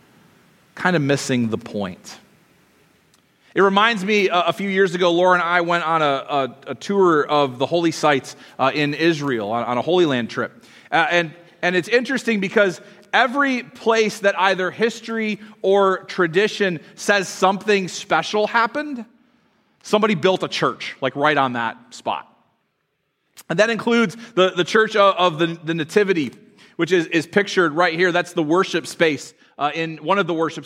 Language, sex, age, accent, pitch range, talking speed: English, male, 30-49, American, 145-195 Hz, 170 wpm